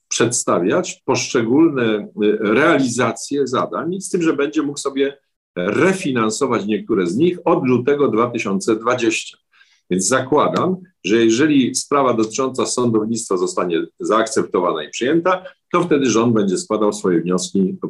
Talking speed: 120 wpm